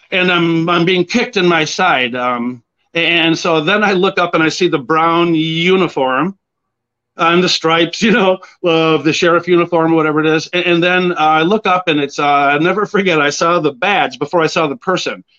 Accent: American